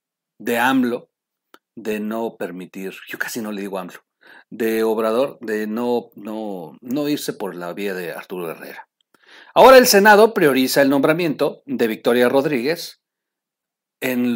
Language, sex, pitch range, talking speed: Spanish, male, 115-175 Hz, 140 wpm